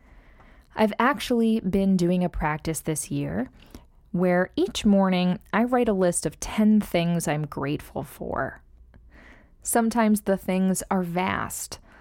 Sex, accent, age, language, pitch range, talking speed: female, American, 20-39, English, 160-205 Hz, 130 wpm